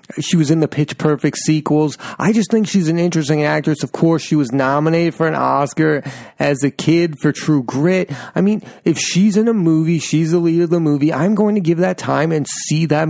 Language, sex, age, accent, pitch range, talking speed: English, male, 30-49, American, 140-170 Hz, 230 wpm